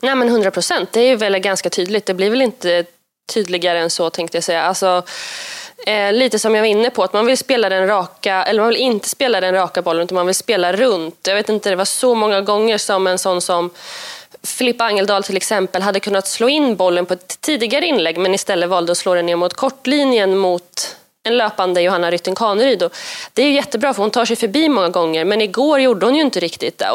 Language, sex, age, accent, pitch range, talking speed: Swedish, female, 20-39, native, 185-245 Hz, 235 wpm